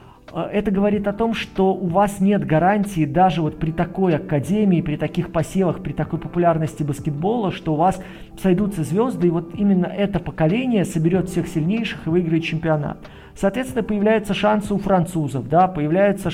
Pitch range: 160-200 Hz